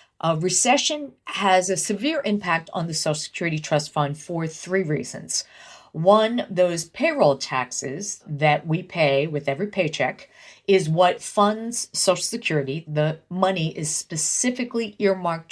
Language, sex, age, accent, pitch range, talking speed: English, female, 50-69, American, 150-190 Hz, 135 wpm